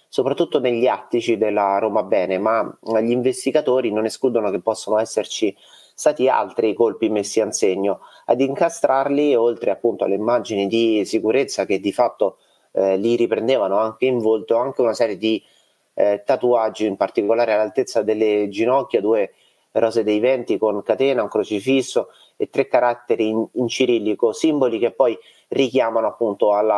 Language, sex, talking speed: Italian, male, 150 wpm